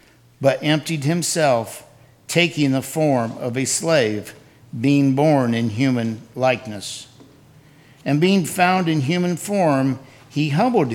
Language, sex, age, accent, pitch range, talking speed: English, male, 50-69, American, 130-155 Hz, 120 wpm